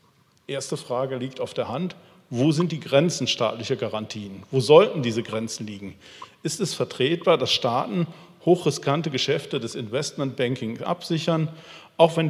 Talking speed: 140 wpm